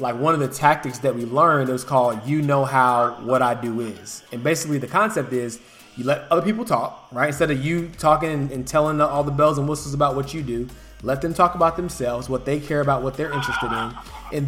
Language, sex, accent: English, male, American